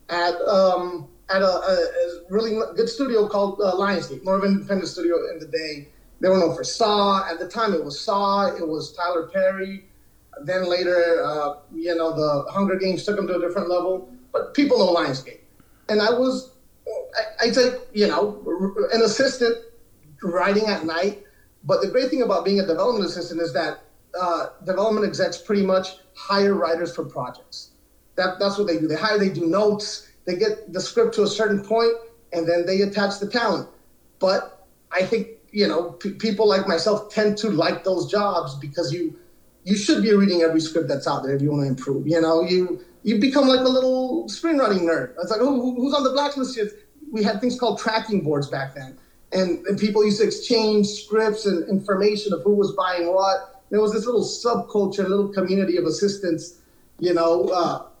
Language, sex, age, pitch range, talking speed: English, male, 30-49, 170-215 Hz, 200 wpm